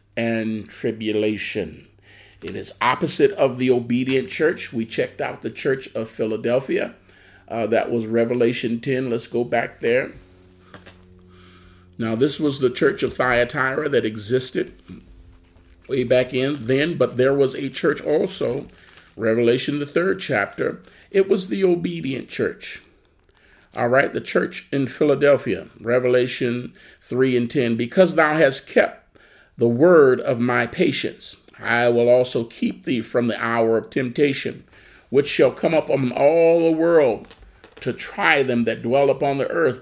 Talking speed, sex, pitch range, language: 150 wpm, male, 115-140 Hz, English